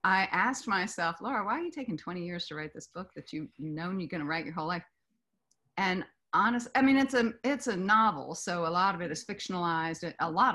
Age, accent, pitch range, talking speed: 30-49, American, 170-240 Hz, 230 wpm